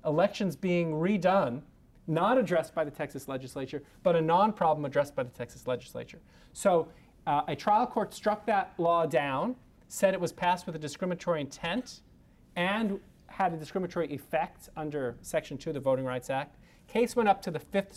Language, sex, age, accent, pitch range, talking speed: English, male, 30-49, American, 145-175 Hz, 175 wpm